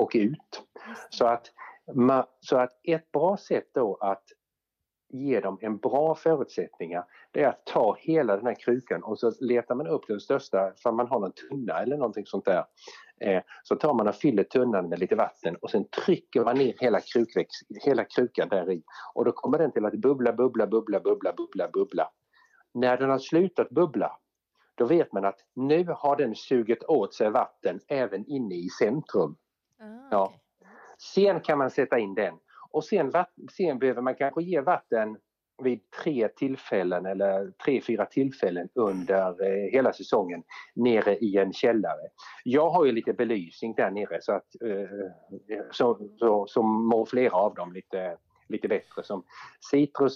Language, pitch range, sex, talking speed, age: Swedish, 100-140 Hz, male, 165 wpm, 50-69